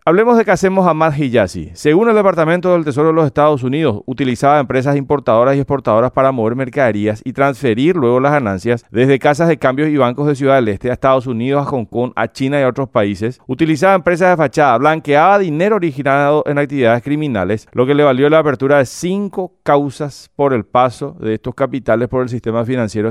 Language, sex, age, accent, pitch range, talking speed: Spanish, male, 40-59, Argentinian, 120-160 Hz, 210 wpm